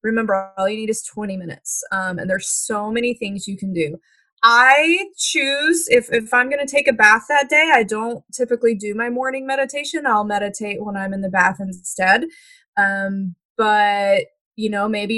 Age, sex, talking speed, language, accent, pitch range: 20-39, female, 190 wpm, English, American, 195-245 Hz